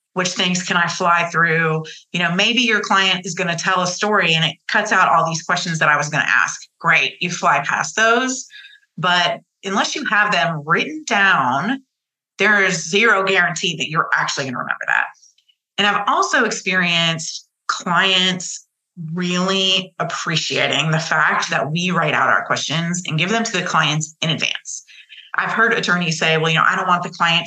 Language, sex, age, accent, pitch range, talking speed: English, female, 30-49, American, 165-200 Hz, 190 wpm